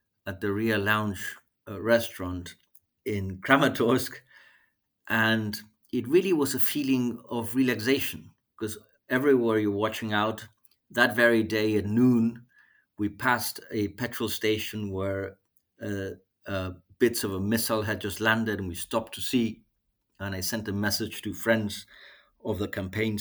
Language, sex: English, male